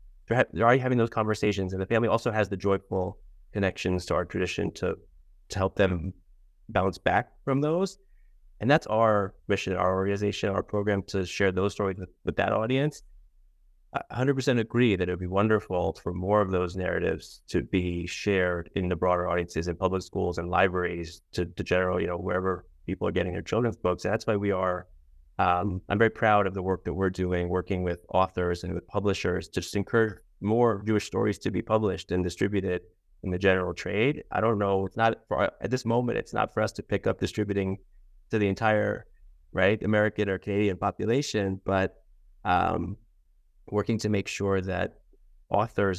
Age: 30-49